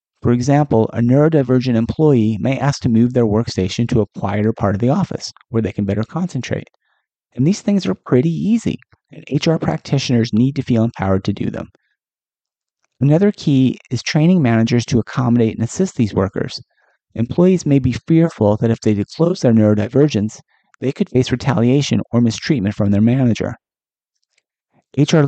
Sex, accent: male, American